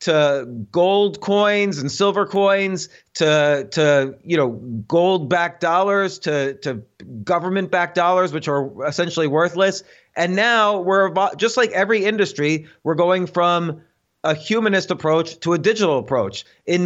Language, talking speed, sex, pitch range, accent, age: English, 140 wpm, male, 155-190 Hz, American, 30-49